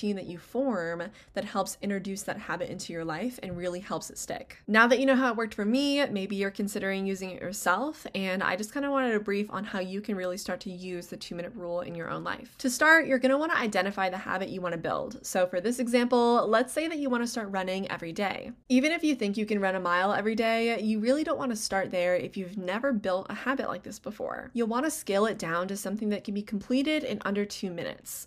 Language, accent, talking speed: English, American, 265 wpm